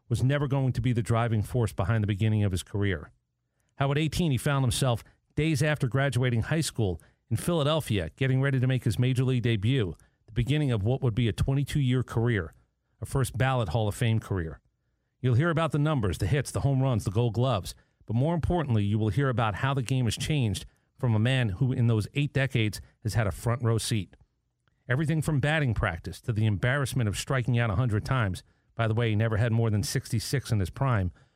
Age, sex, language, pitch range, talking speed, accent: 40-59, male, English, 110-135 Hz, 220 wpm, American